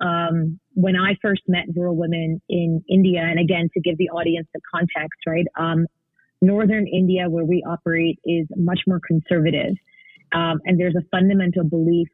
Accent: American